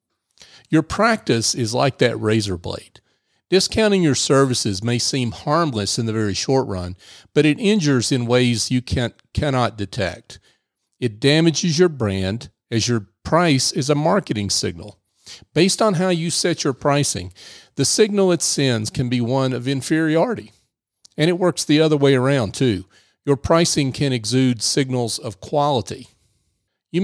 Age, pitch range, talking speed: 40-59, 110-145 Hz, 155 wpm